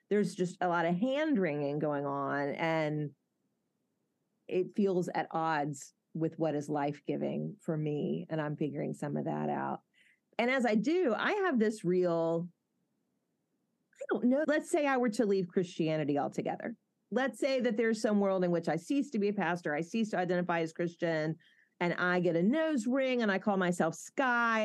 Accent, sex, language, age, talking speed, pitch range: American, female, English, 30-49, 185 wpm, 165-225 Hz